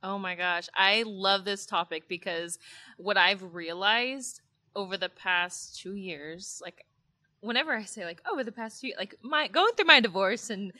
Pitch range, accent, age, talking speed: 155-195 Hz, American, 20-39, 185 wpm